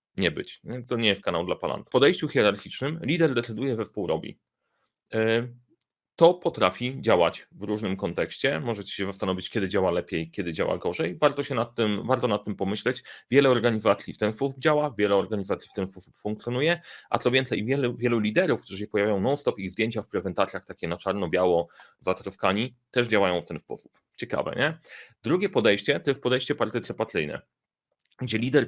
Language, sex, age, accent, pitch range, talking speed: Polish, male, 30-49, native, 100-130 Hz, 180 wpm